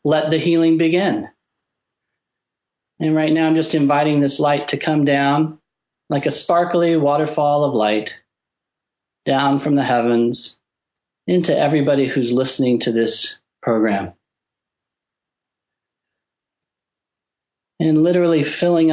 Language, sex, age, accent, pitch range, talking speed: English, male, 40-59, American, 120-155 Hz, 110 wpm